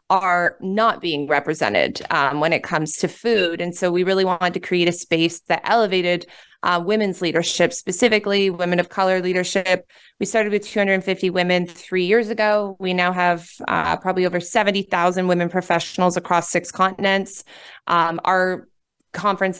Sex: female